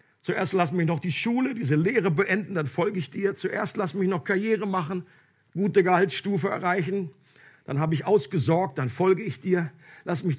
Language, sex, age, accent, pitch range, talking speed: German, male, 50-69, German, 160-200 Hz, 185 wpm